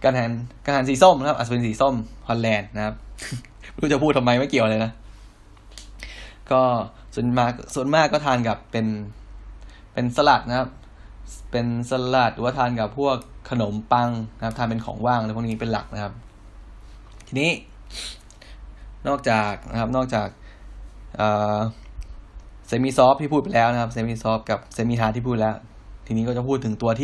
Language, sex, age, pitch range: Thai, male, 10-29, 105-125 Hz